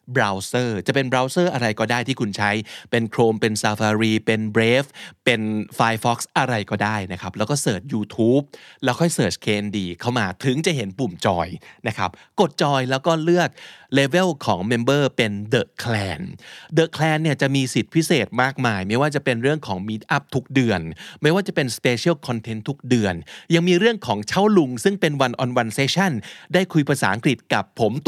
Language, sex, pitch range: Thai, male, 110-145 Hz